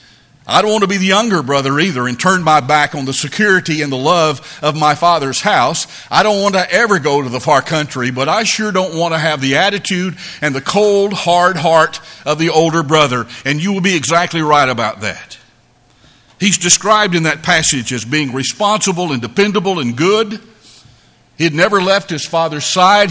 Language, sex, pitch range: English, male, 135-185 Hz